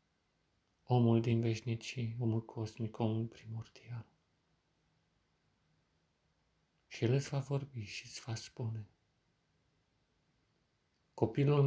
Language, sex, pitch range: Romanian, male, 115-145 Hz